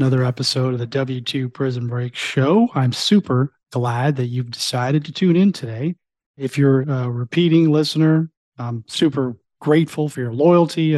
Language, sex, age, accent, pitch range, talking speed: English, male, 30-49, American, 120-140 Hz, 160 wpm